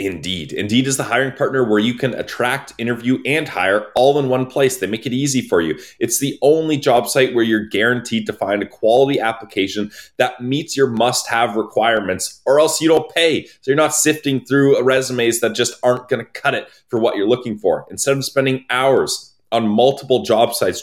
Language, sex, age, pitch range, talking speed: English, male, 20-39, 115-140 Hz, 205 wpm